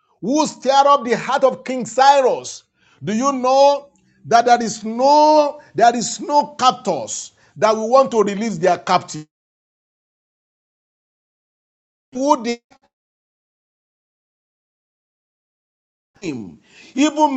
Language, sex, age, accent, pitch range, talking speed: English, male, 50-69, Nigerian, 220-285 Hz, 95 wpm